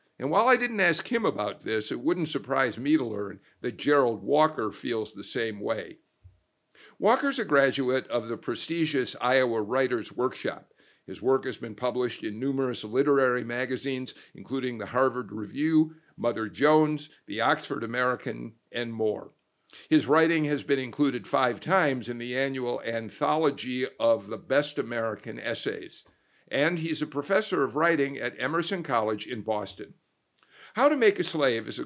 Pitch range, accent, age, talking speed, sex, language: 125-165 Hz, American, 50-69, 160 wpm, male, English